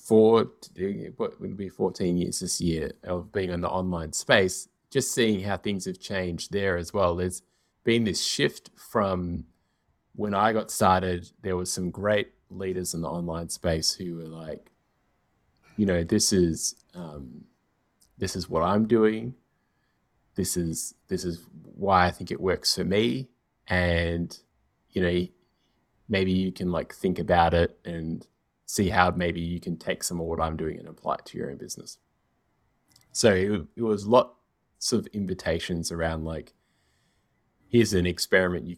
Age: 20-39